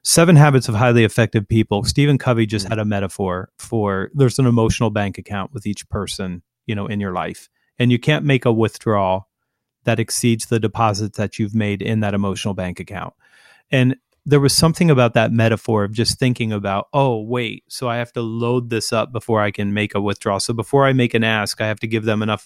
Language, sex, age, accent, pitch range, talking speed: English, male, 30-49, American, 105-125 Hz, 220 wpm